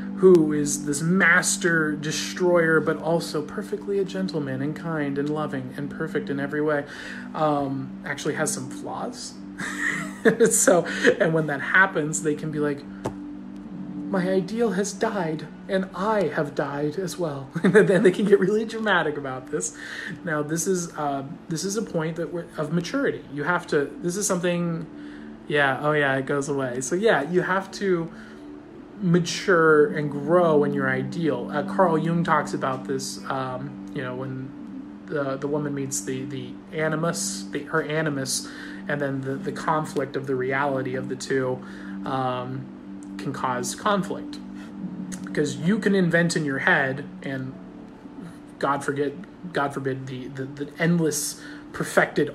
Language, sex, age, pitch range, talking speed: English, male, 30-49, 135-175 Hz, 160 wpm